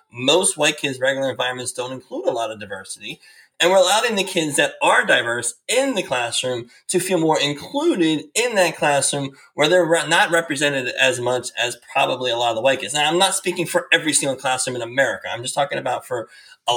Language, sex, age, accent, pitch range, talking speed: English, male, 30-49, American, 130-180 Hz, 210 wpm